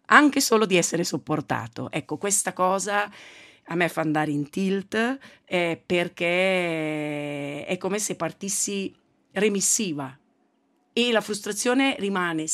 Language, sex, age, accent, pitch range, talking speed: Italian, female, 40-59, native, 165-220 Hz, 115 wpm